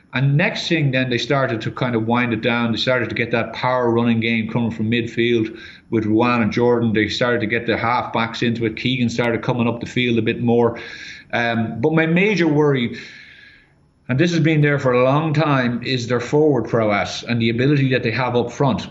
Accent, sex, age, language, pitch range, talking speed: Irish, male, 30-49, English, 115-140 Hz, 220 wpm